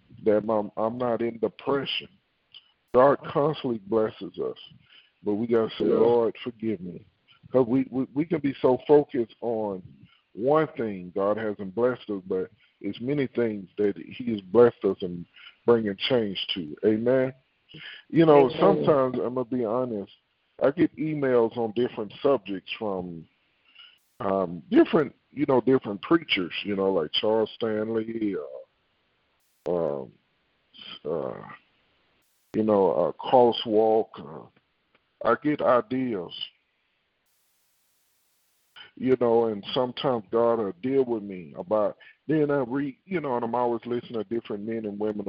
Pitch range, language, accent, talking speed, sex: 105-135 Hz, English, American, 140 wpm, male